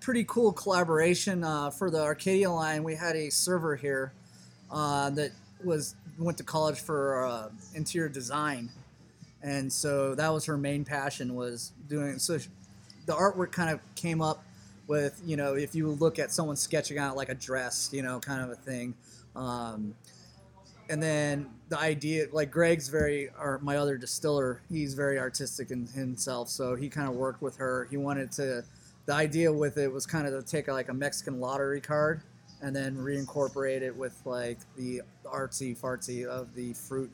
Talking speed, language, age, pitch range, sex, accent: 180 wpm, English, 20-39, 130-155 Hz, male, American